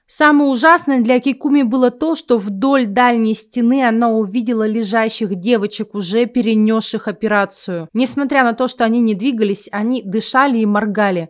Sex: female